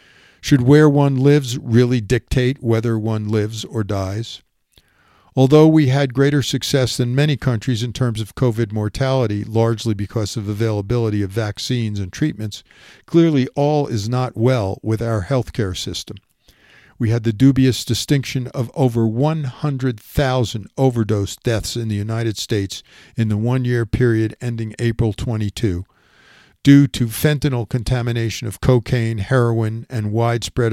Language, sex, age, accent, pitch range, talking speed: English, male, 50-69, American, 110-135 Hz, 140 wpm